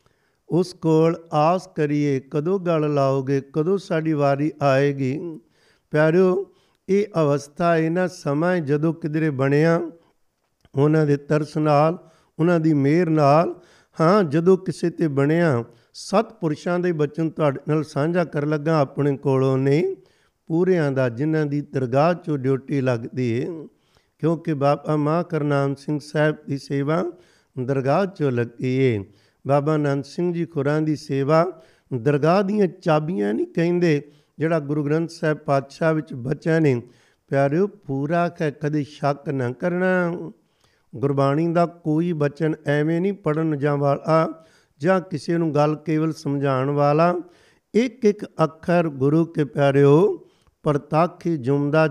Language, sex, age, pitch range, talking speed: Punjabi, male, 50-69, 140-170 Hz, 135 wpm